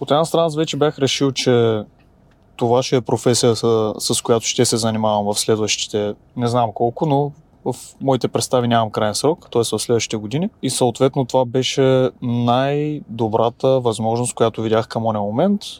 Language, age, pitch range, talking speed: Bulgarian, 20-39, 110-130 Hz, 165 wpm